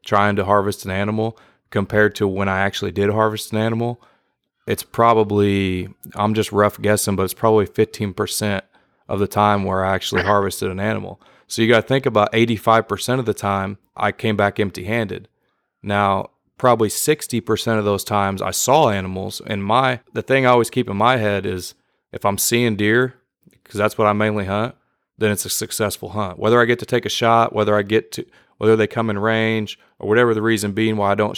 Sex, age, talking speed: male, 30-49, 205 wpm